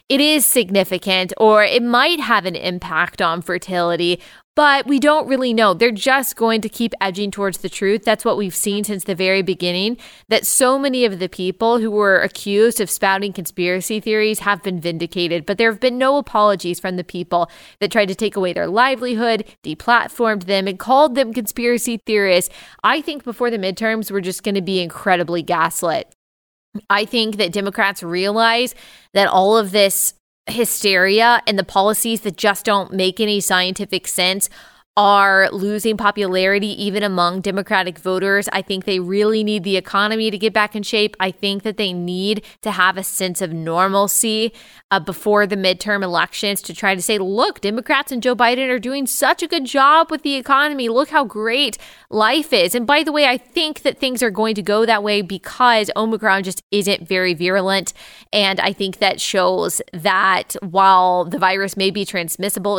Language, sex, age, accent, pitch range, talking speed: English, female, 20-39, American, 190-230 Hz, 185 wpm